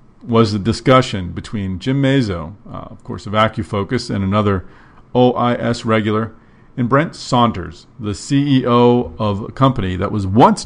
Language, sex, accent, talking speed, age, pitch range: English, male, American, 145 wpm, 50-69, 100-120 Hz